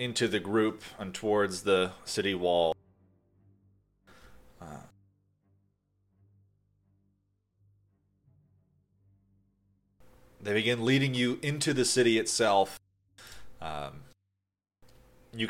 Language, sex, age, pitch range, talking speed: English, male, 30-49, 95-125 Hz, 75 wpm